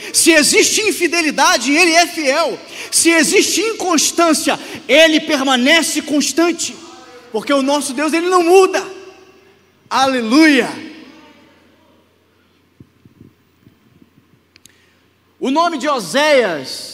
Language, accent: Portuguese, Brazilian